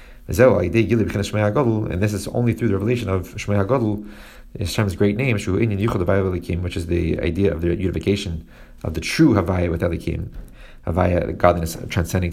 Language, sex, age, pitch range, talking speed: English, male, 30-49, 85-110 Hz, 145 wpm